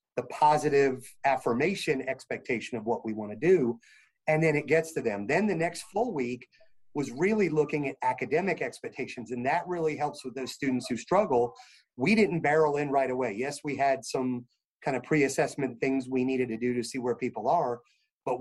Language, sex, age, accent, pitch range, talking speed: English, male, 30-49, American, 125-155 Hz, 190 wpm